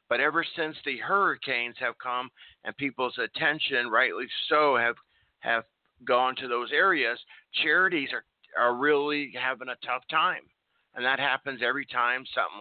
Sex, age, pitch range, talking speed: male, 50-69, 125-165 Hz, 150 wpm